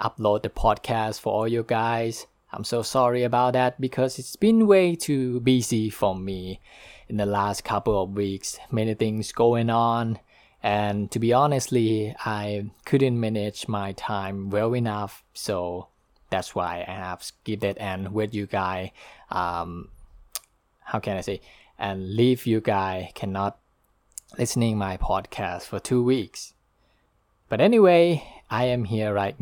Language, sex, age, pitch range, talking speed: English, male, 20-39, 100-120 Hz, 150 wpm